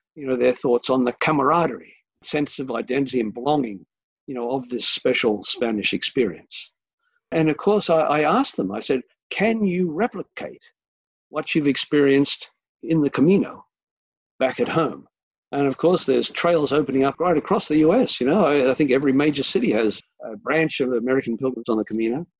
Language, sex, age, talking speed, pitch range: English, male, 50-69, 180 wpm, 130-170 Hz